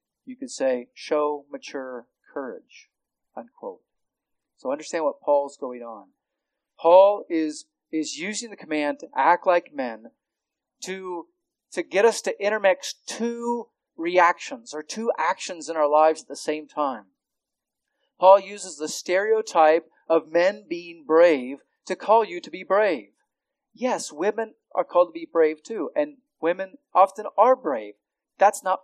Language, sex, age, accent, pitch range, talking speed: English, male, 40-59, American, 170-275 Hz, 145 wpm